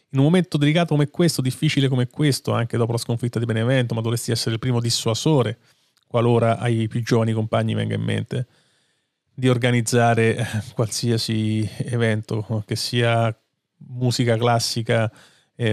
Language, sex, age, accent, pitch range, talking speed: Italian, male, 30-49, native, 115-130 Hz, 145 wpm